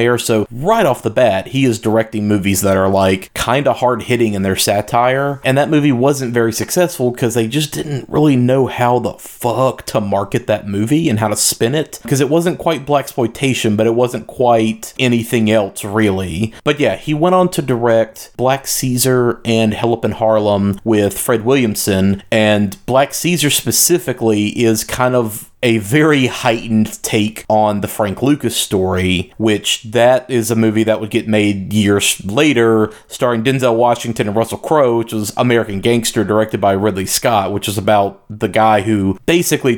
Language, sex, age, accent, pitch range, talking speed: English, male, 30-49, American, 105-125 Hz, 180 wpm